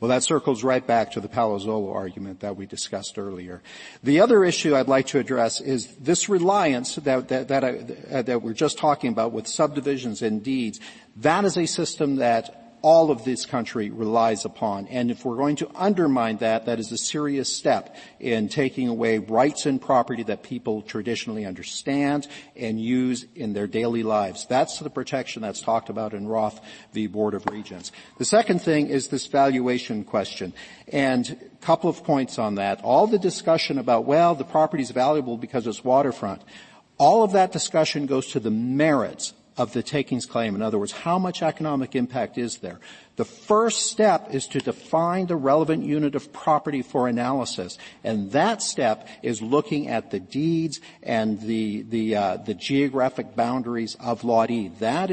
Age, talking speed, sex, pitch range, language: 50-69, 180 wpm, male, 115-155 Hz, English